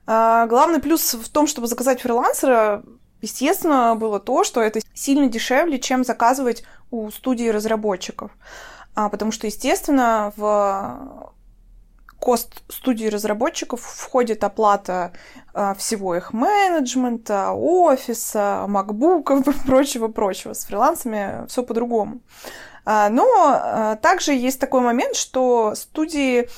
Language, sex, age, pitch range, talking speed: Russian, female, 20-39, 225-285 Hz, 110 wpm